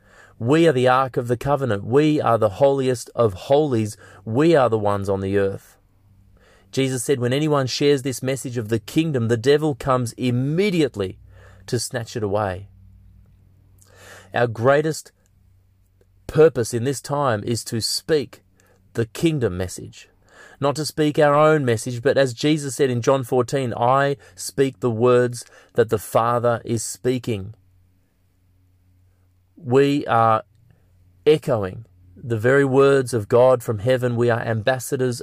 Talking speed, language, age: 145 wpm, English, 30-49